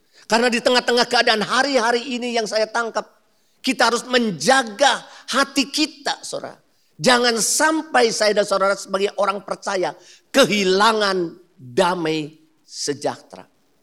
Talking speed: 115 wpm